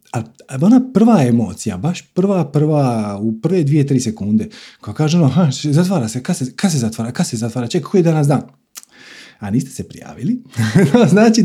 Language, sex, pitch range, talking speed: Croatian, male, 115-155 Hz, 180 wpm